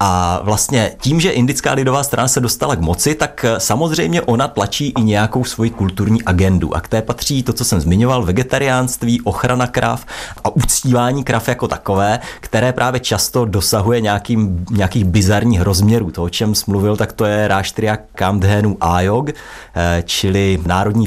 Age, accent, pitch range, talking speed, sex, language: 30-49, native, 105-140 Hz, 160 wpm, male, Czech